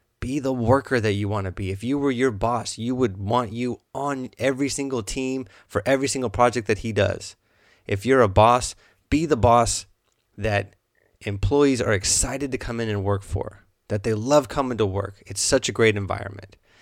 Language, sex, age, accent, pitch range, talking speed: English, male, 20-39, American, 100-120 Hz, 200 wpm